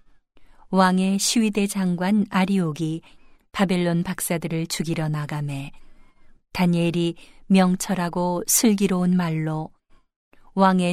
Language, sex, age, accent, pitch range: Korean, female, 40-59, native, 165-190 Hz